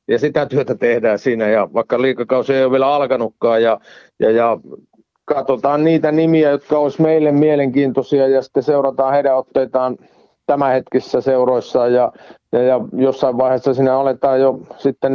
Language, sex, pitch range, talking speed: Finnish, male, 125-145 Hz, 150 wpm